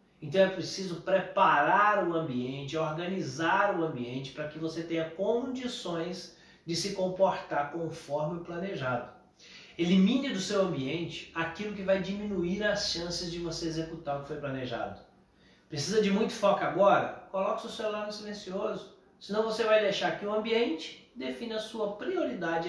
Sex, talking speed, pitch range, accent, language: male, 155 wpm, 155-195 Hz, Brazilian, Portuguese